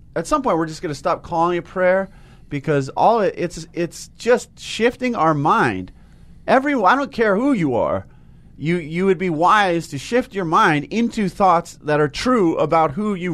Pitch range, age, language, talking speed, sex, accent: 140-195 Hz, 30-49, English, 200 wpm, male, American